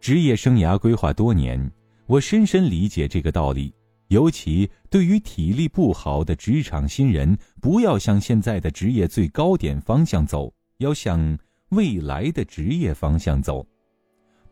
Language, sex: Chinese, male